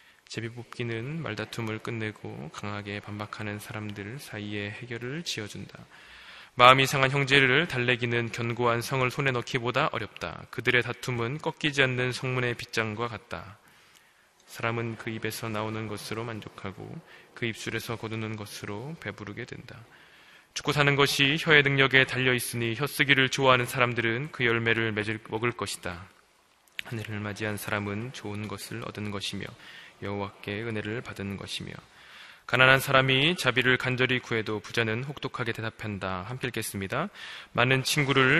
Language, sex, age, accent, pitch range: Korean, male, 20-39, native, 105-130 Hz